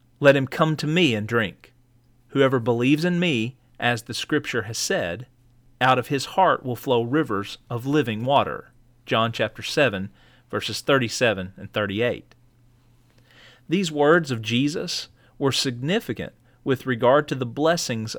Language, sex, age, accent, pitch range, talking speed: English, male, 40-59, American, 120-140 Hz, 145 wpm